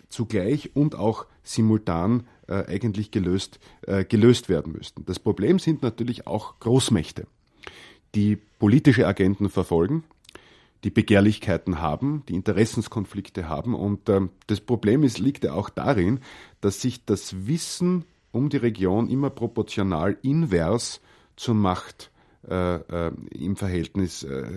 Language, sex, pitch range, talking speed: English, male, 95-120 Hz, 125 wpm